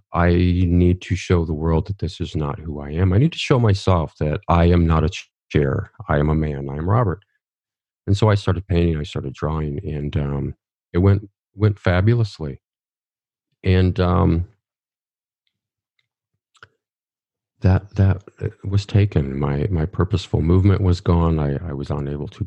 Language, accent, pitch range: English, American, 75-100 Hz